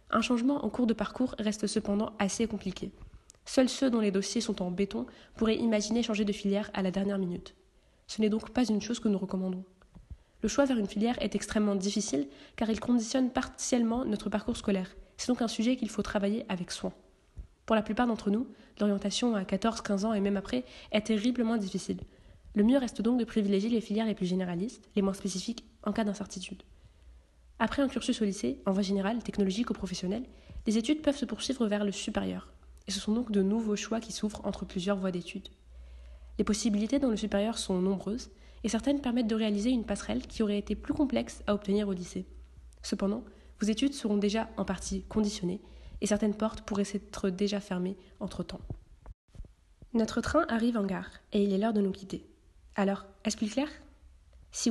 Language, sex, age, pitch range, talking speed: French, female, 20-39, 195-230 Hz, 200 wpm